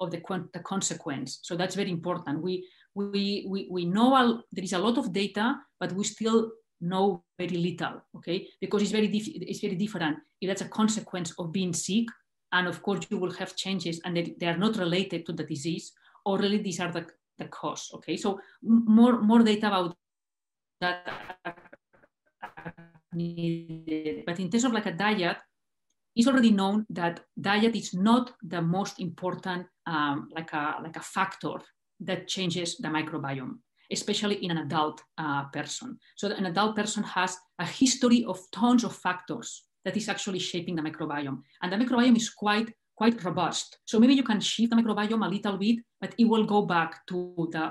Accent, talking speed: Spanish, 185 wpm